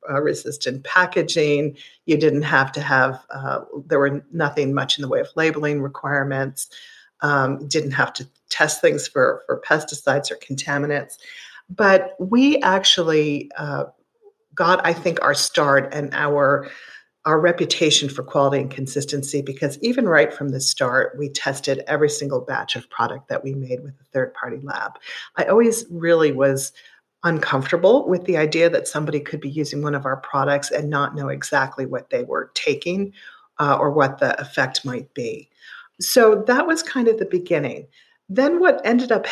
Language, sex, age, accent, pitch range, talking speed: English, female, 50-69, American, 140-190 Hz, 170 wpm